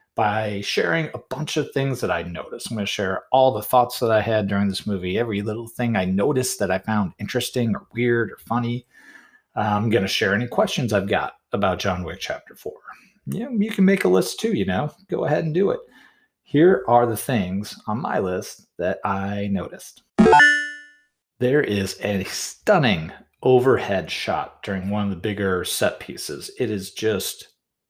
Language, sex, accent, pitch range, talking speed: English, male, American, 105-145 Hz, 185 wpm